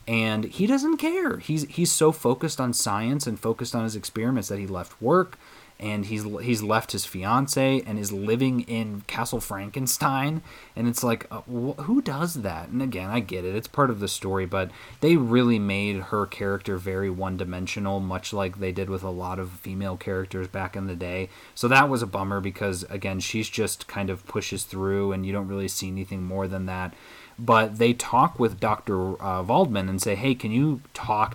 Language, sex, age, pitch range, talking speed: English, male, 20-39, 95-120 Hz, 205 wpm